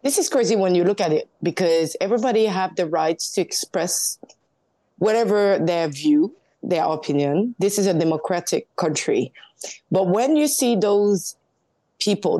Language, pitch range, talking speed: English, 185-240 Hz, 150 wpm